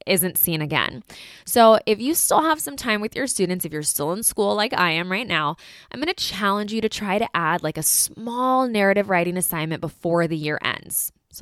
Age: 20-39